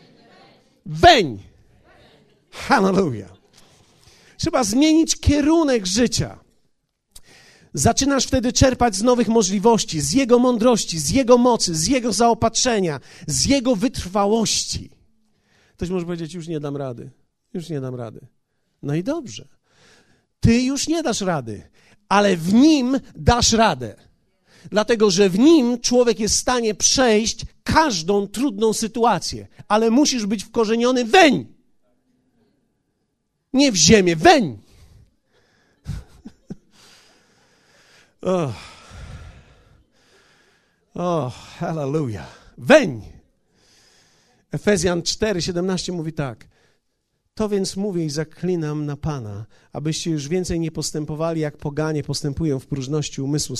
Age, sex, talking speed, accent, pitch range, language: 50-69, male, 105 wpm, native, 150-240 Hz, Polish